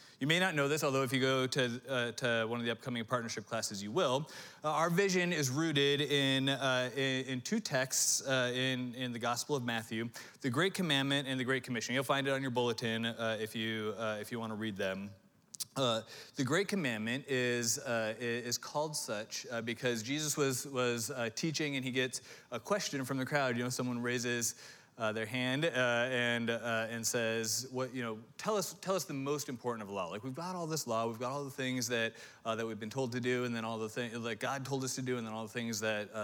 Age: 30-49